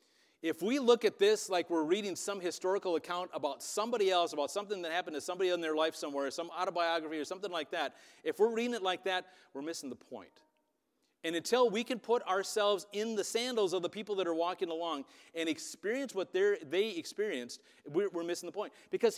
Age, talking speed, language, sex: 40-59, 210 wpm, English, male